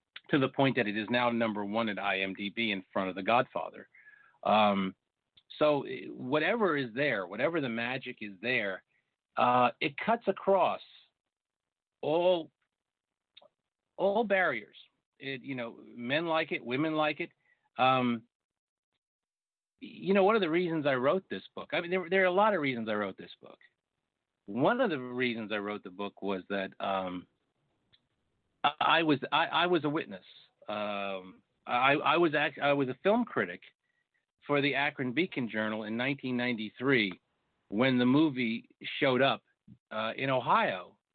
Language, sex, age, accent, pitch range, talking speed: English, male, 50-69, American, 115-170 Hz, 160 wpm